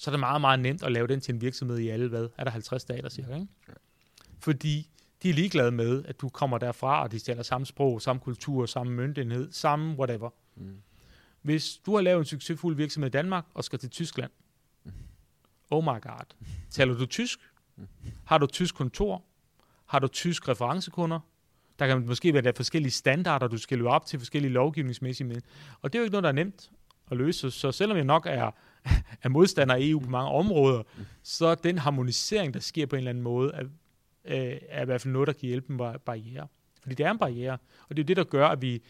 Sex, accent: male, native